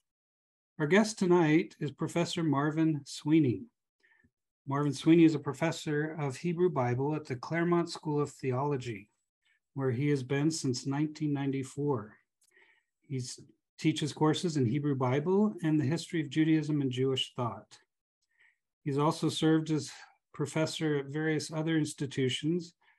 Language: English